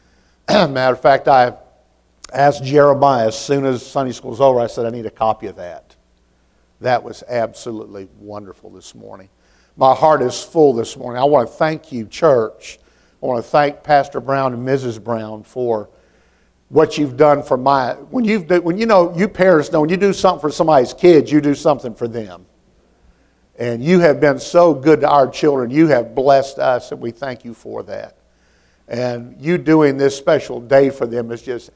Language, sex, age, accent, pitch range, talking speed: English, male, 50-69, American, 110-155 Hz, 195 wpm